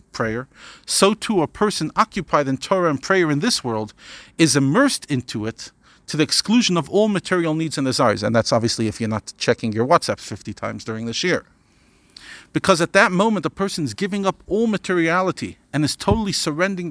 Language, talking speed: English, 195 wpm